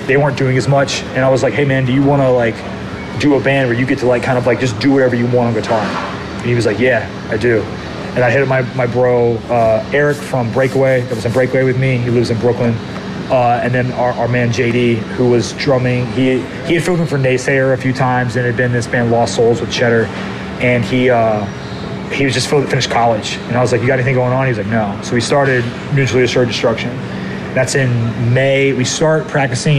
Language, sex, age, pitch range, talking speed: English, male, 30-49, 120-135 Hz, 250 wpm